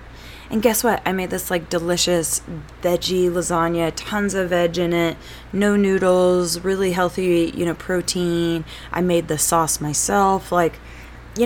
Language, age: English, 20-39